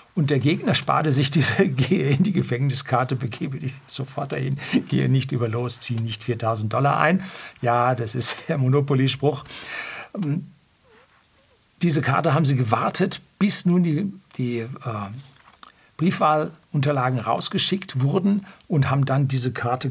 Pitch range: 125-155 Hz